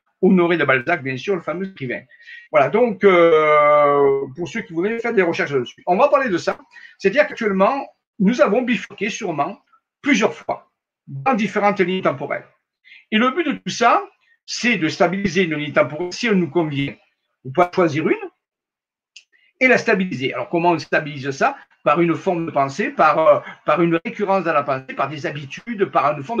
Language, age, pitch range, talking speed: French, 50-69, 150-220 Hz, 190 wpm